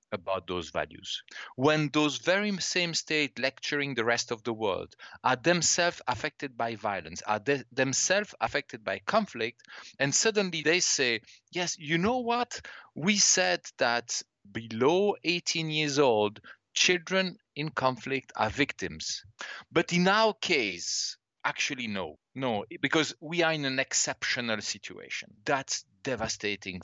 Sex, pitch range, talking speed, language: male, 115-160 Hz, 135 wpm, English